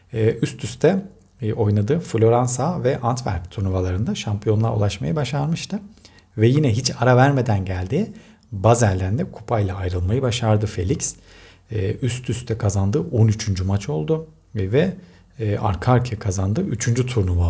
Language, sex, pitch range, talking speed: Turkish, male, 100-130 Hz, 115 wpm